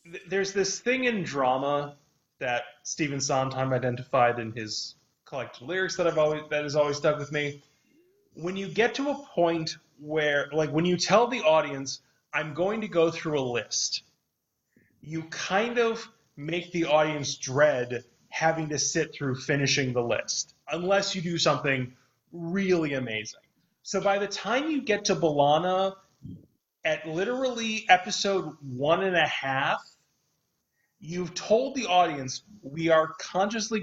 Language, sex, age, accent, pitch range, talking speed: English, male, 30-49, American, 145-190 Hz, 150 wpm